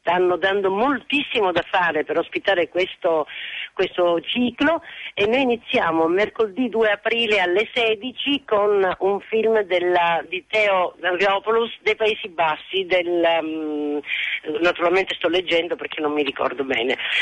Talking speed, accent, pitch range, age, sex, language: 130 wpm, native, 175-230 Hz, 50-69, female, Italian